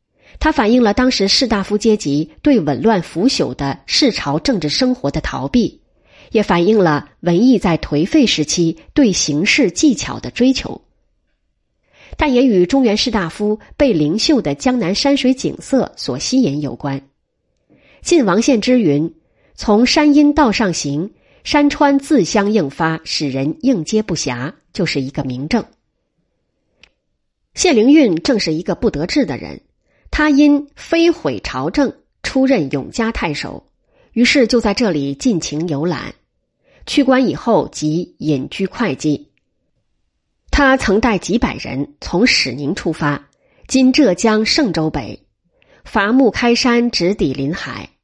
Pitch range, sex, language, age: 160-265 Hz, female, Chinese, 30-49